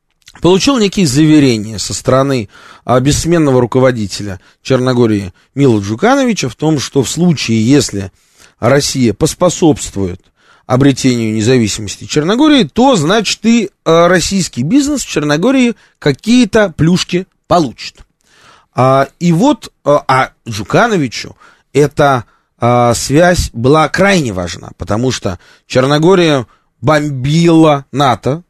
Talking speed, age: 105 wpm, 30-49